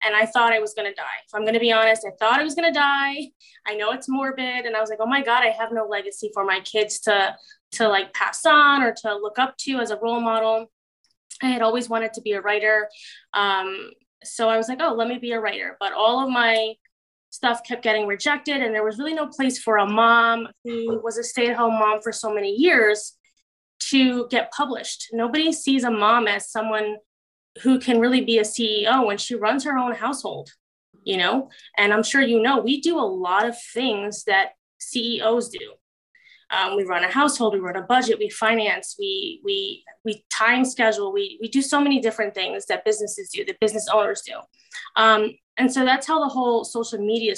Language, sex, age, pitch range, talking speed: English, female, 20-39, 215-265 Hz, 225 wpm